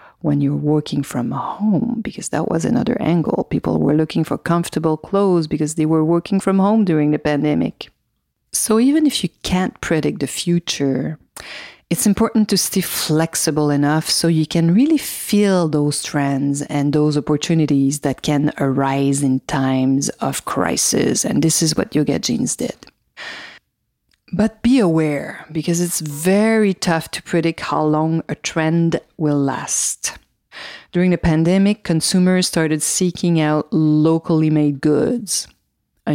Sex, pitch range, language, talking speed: female, 145-180 Hz, English, 150 wpm